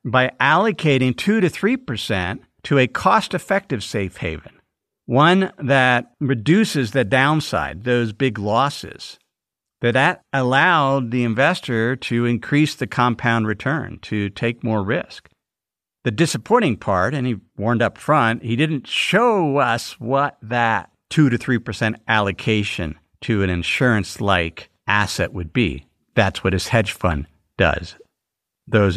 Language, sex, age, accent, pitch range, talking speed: English, male, 50-69, American, 105-140 Hz, 135 wpm